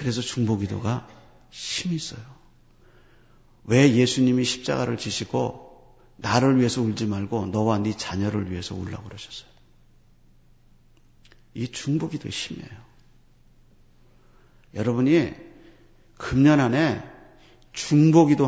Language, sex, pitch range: Korean, male, 110-135 Hz